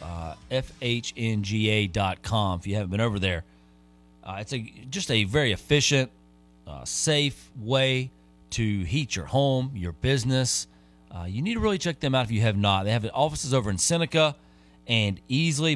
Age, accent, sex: 40-59, American, male